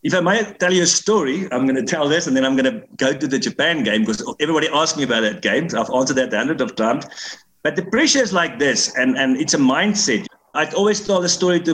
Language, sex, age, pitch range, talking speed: English, male, 50-69, 140-195 Hz, 270 wpm